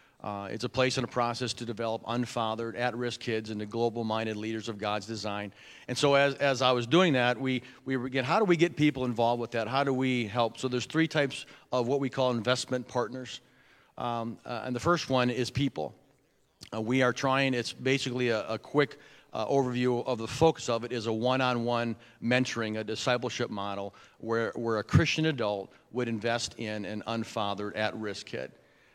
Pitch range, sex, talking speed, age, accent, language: 110-130 Hz, male, 195 wpm, 40-59, American, English